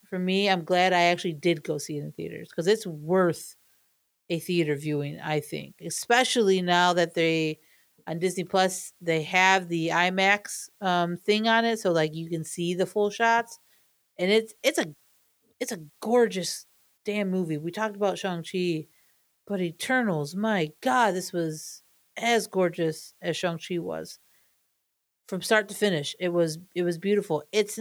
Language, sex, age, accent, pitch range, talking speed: English, female, 40-59, American, 175-245 Hz, 165 wpm